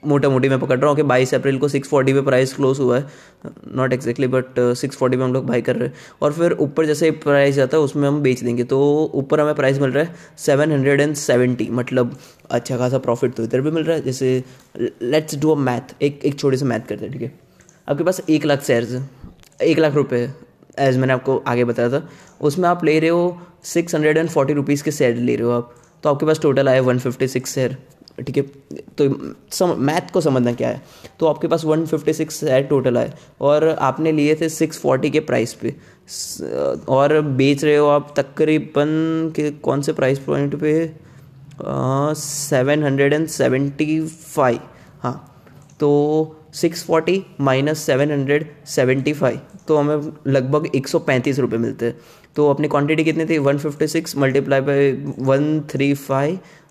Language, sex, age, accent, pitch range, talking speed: Hindi, male, 20-39, native, 130-155 Hz, 170 wpm